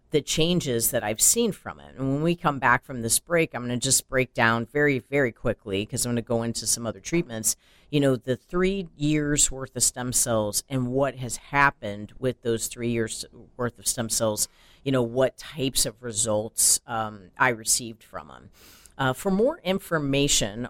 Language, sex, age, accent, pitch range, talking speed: English, female, 50-69, American, 115-150 Hz, 200 wpm